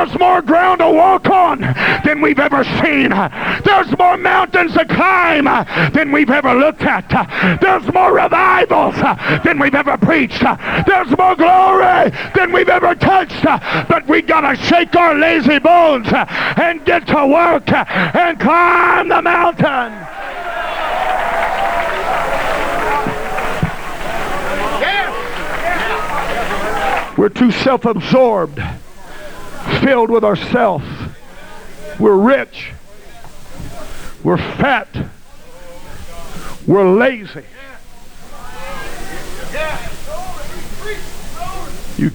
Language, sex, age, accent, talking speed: English, male, 50-69, American, 90 wpm